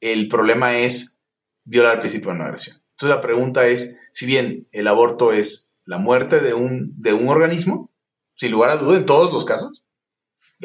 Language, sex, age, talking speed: Spanish, male, 30-49, 190 wpm